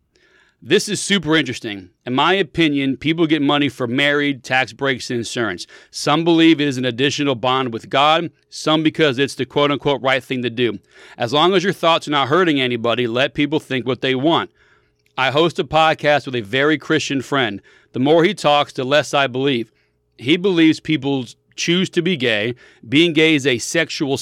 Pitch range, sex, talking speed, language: 130-160 Hz, male, 195 wpm, English